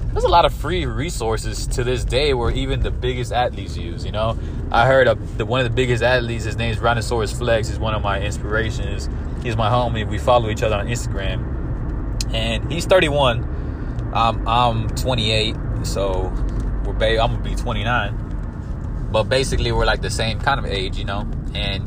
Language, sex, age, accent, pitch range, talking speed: English, male, 20-39, American, 100-130 Hz, 190 wpm